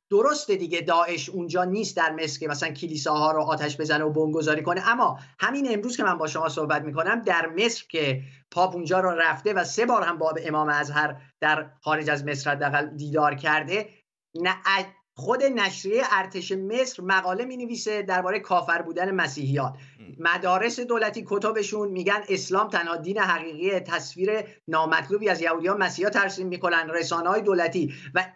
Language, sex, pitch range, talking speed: Persian, male, 160-210 Hz, 165 wpm